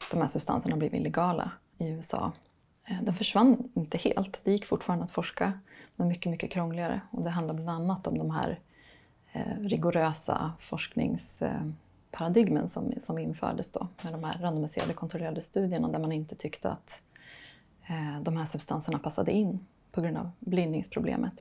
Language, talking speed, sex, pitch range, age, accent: Swedish, 150 wpm, female, 160-200 Hz, 20-39, native